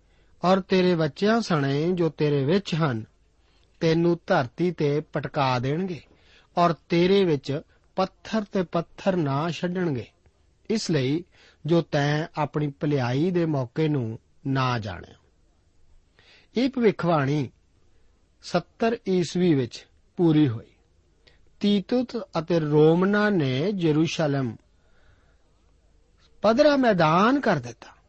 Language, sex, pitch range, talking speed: Punjabi, male, 115-185 Hz, 90 wpm